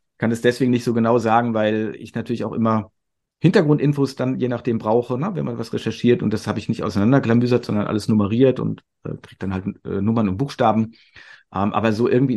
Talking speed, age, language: 210 wpm, 40-59, German